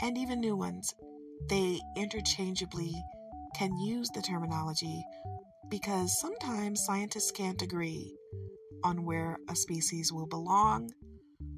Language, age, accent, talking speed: English, 40-59, American, 110 wpm